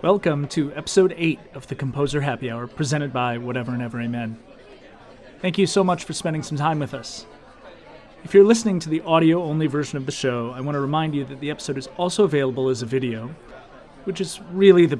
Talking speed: 210 wpm